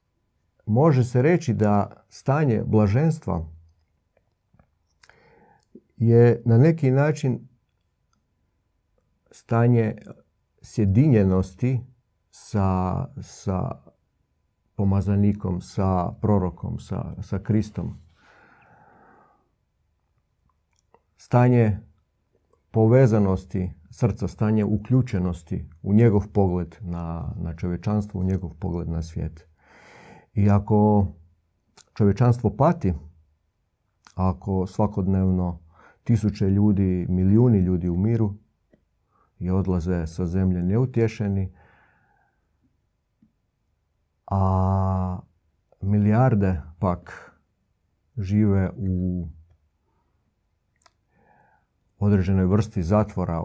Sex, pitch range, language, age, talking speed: male, 90-110 Hz, Croatian, 50-69, 65 wpm